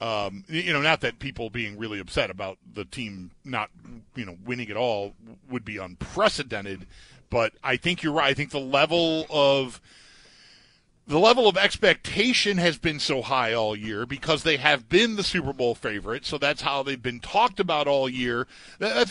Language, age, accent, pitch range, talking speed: English, 50-69, American, 140-210 Hz, 185 wpm